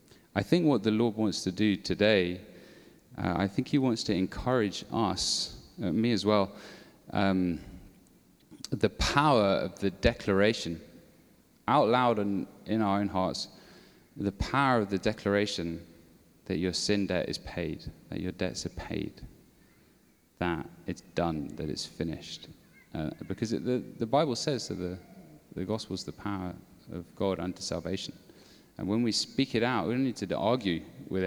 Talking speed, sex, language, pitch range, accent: 165 wpm, male, English, 90-110 Hz, British